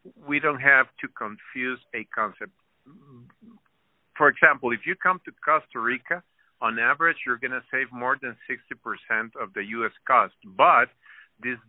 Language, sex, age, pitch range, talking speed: English, male, 50-69, 110-140 Hz, 155 wpm